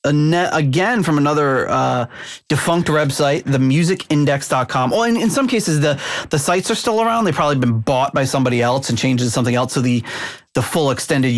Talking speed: 175 wpm